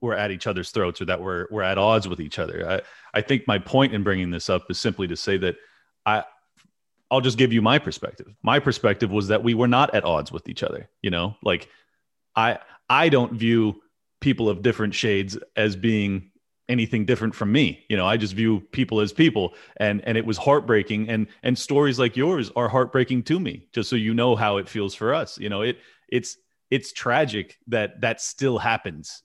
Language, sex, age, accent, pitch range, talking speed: English, male, 30-49, American, 100-125 Hz, 215 wpm